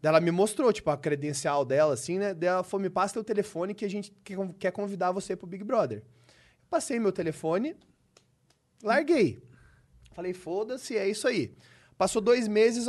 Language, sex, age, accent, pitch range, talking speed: Portuguese, male, 20-39, Brazilian, 145-210 Hz, 180 wpm